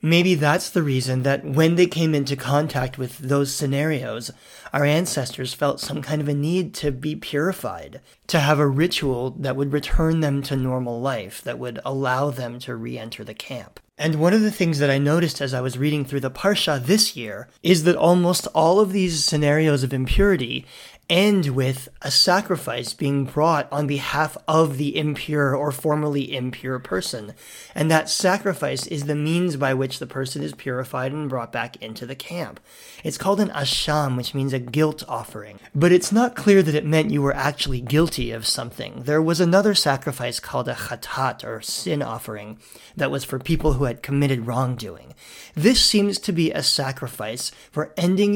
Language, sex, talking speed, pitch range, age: English, male, 185 wpm, 130-165 Hz, 30-49